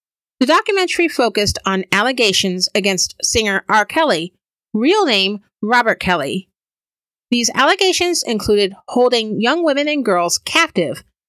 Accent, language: American, English